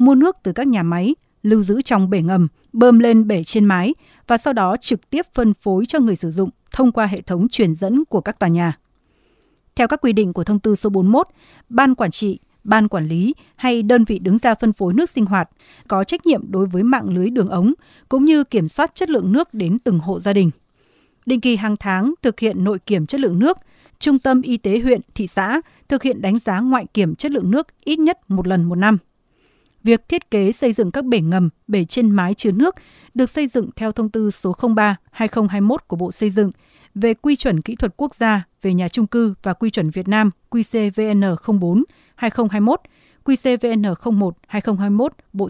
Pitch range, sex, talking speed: 195-245 Hz, female, 210 wpm